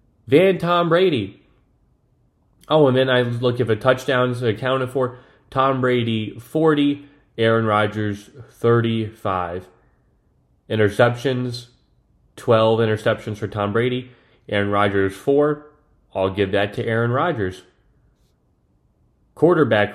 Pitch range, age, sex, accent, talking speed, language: 105-125 Hz, 30-49, male, American, 110 wpm, English